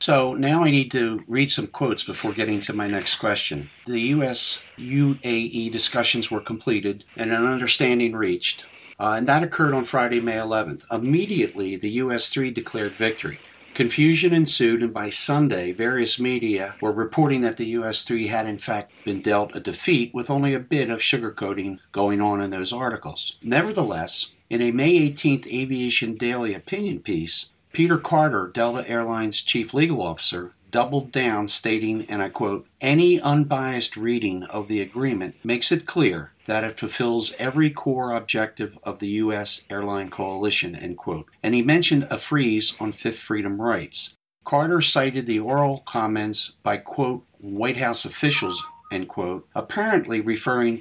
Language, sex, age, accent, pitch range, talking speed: English, male, 50-69, American, 105-135 Hz, 160 wpm